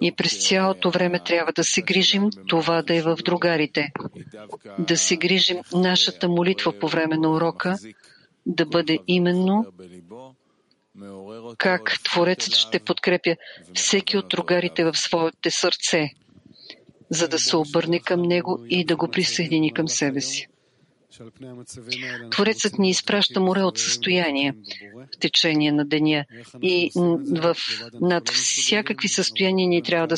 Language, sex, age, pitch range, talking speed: English, female, 50-69, 150-185 Hz, 130 wpm